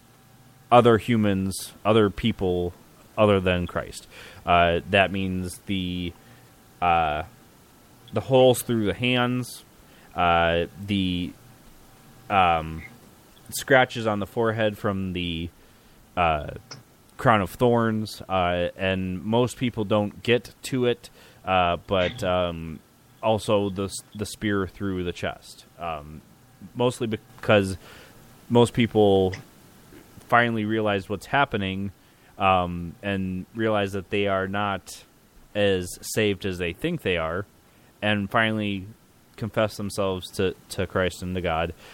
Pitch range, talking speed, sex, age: 95-120 Hz, 115 wpm, male, 30-49